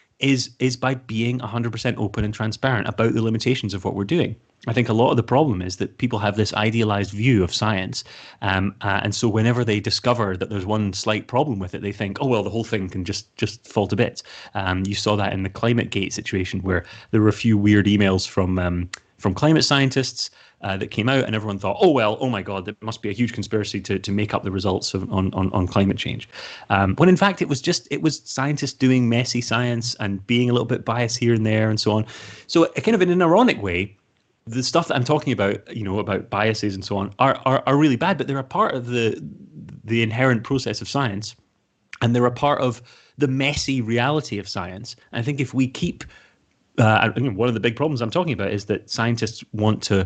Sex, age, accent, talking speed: male, 30-49, British, 245 wpm